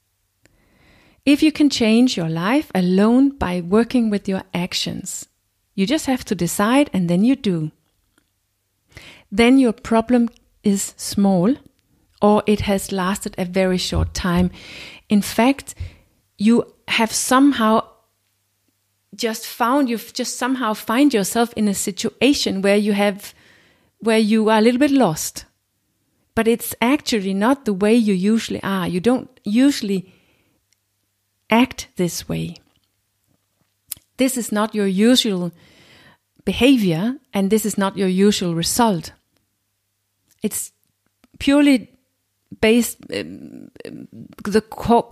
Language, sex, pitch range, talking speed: English, female, 175-235 Hz, 125 wpm